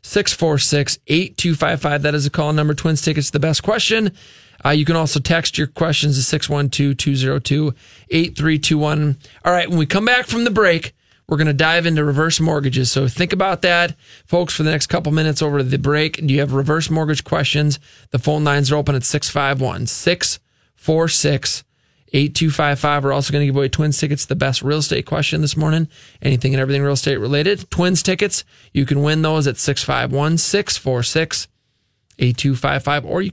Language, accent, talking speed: English, American, 170 wpm